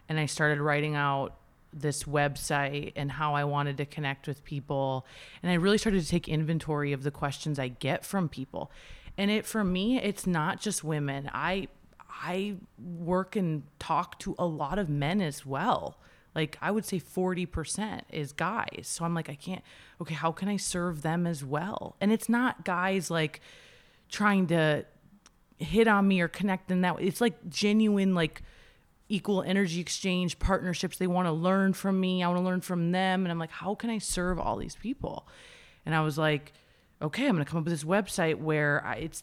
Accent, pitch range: American, 145-185 Hz